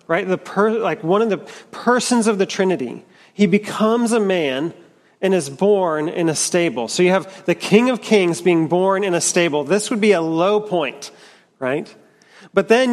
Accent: American